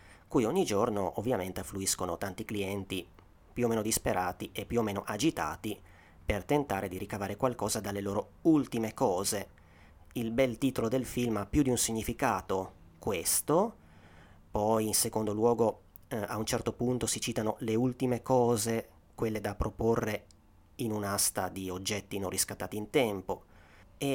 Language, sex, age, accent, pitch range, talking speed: Italian, male, 30-49, native, 95-115 Hz, 155 wpm